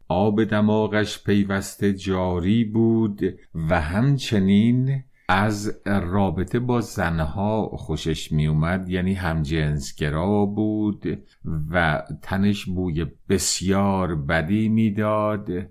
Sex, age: male, 50-69